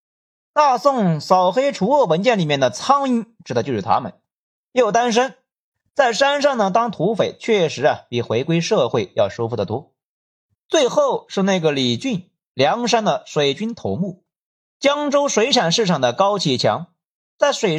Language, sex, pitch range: Chinese, male, 155-220 Hz